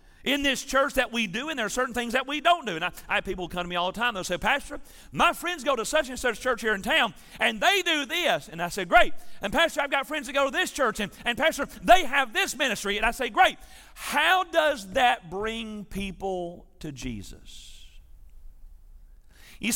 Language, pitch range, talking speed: English, 195-290 Hz, 235 wpm